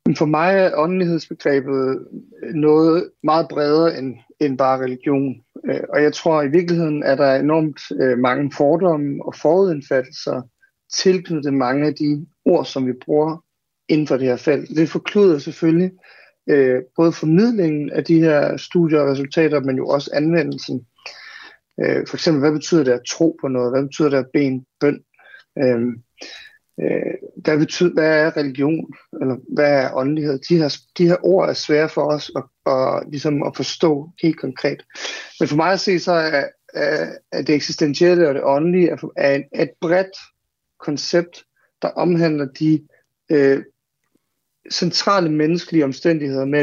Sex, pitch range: male, 140-165 Hz